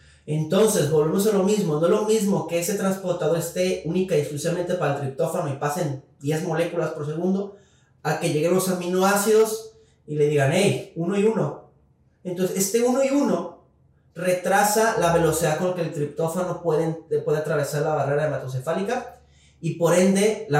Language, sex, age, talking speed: Spanish, male, 30-49, 175 wpm